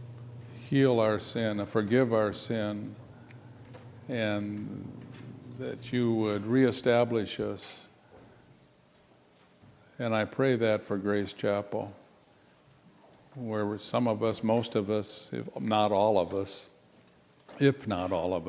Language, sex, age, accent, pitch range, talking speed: English, male, 60-79, American, 100-115 Hz, 115 wpm